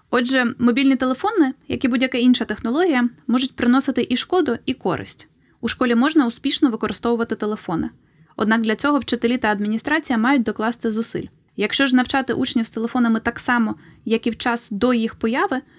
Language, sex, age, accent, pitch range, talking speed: Ukrainian, female, 20-39, native, 220-270 Hz, 165 wpm